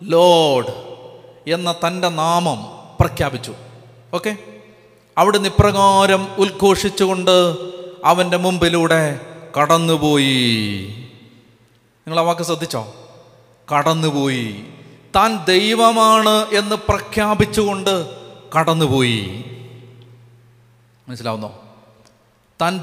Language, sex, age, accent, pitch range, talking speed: Malayalam, male, 30-49, native, 145-195 Hz, 55 wpm